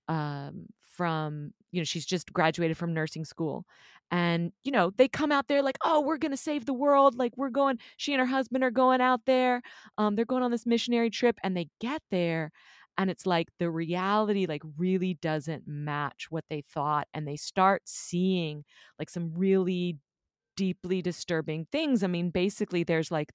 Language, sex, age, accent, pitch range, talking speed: English, female, 30-49, American, 155-195 Hz, 190 wpm